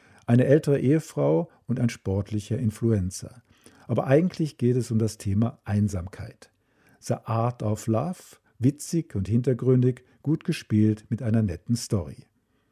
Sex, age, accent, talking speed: male, 50-69, German, 130 wpm